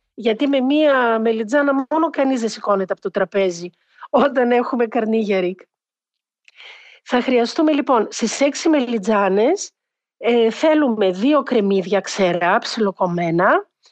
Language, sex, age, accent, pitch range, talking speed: Greek, female, 50-69, native, 220-310 Hz, 110 wpm